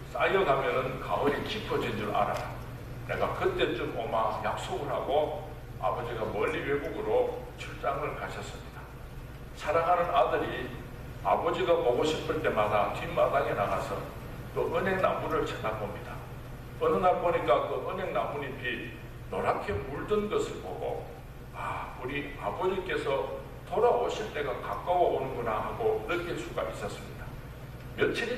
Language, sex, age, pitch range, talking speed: English, male, 60-79, 125-180 Hz, 100 wpm